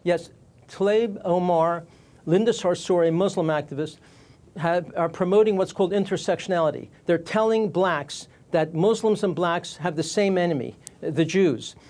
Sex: male